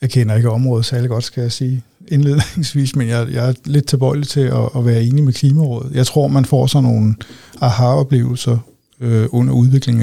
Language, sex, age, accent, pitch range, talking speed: Danish, male, 60-79, native, 120-135 Hz, 195 wpm